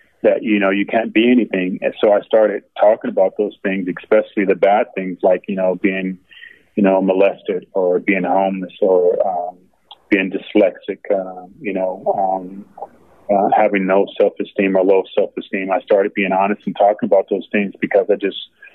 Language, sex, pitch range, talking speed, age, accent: English, male, 95-110 Hz, 185 wpm, 30-49, American